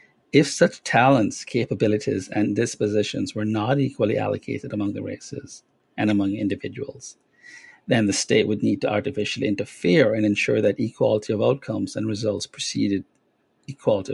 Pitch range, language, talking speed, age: 105-125 Hz, English, 145 wpm, 50-69